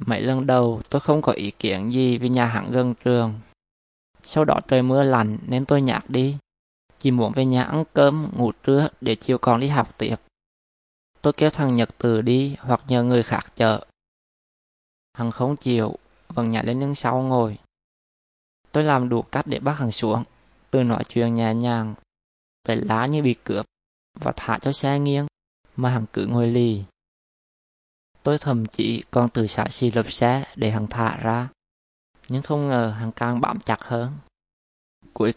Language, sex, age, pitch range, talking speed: Vietnamese, male, 20-39, 110-130 Hz, 180 wpm